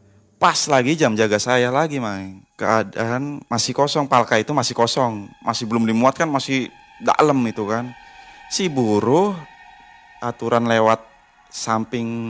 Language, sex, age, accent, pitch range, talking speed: Indonesian, male, 30-49, native, 105-135 Hz, 125 wpm